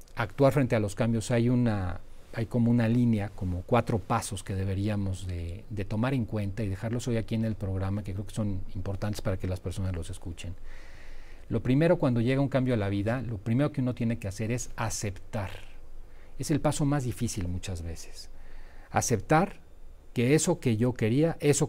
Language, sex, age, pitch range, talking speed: Spanish, male, 40-59, 95-125 Hz, 195 wpm